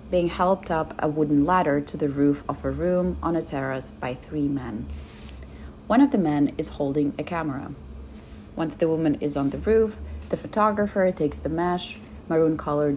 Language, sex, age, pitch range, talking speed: English, female, 30-49, 135-175 Hz, 180 wpm